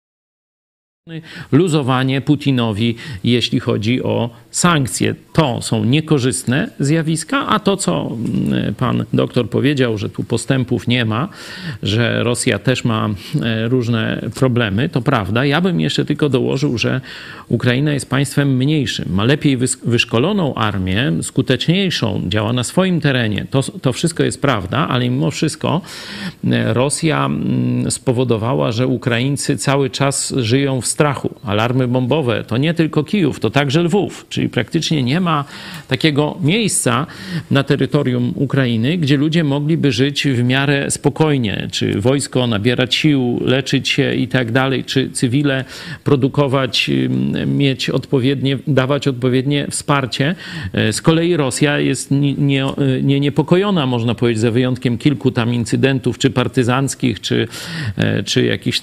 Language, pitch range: Polish, 120-145 Hz